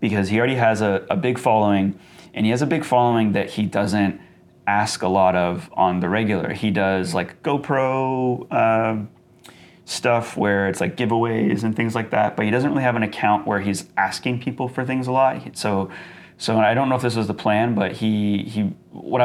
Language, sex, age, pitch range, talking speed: English, male, 30-49, 100-120 Hz, 210 wpm